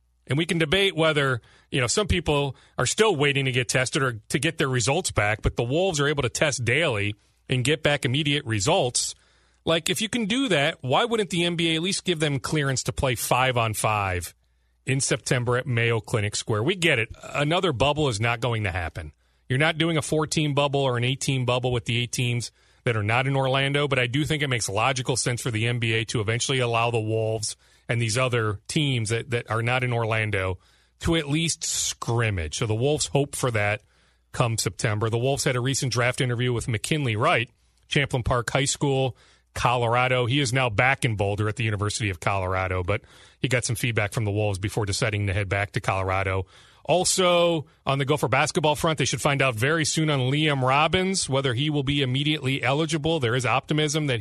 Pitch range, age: 110-145 Hz, 40-59